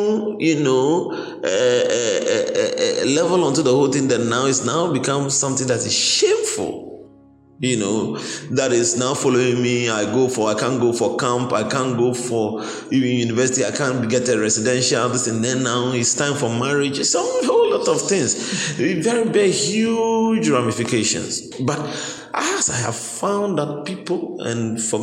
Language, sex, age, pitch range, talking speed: English, male, 30-49, 110-160 Hz, 175 wpm